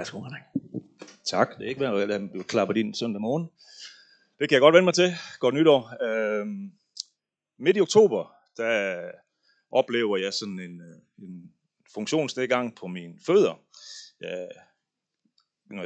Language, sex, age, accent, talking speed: Danish, male, 30-49, native, 145 wpm